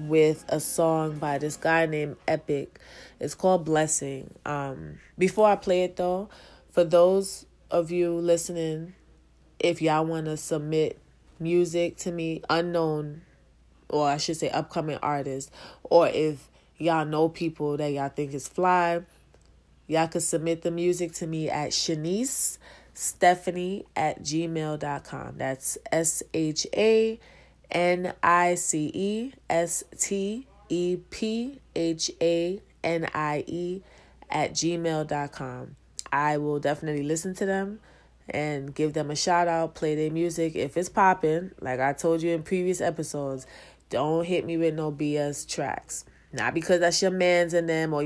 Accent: American